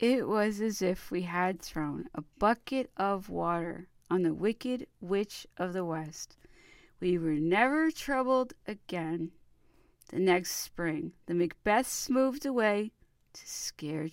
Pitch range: 165-235 Hz